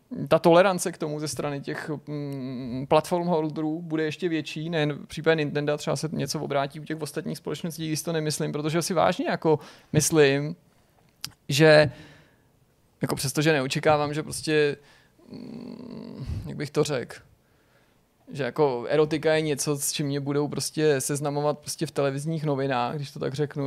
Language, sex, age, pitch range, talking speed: Czech, male, 20-39, 145-165 Hz, 155 wpm